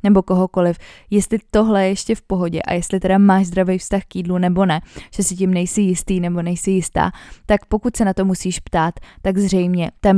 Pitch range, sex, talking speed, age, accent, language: 180-195 Hz, female, 205 wpm, 20-39, native, Czech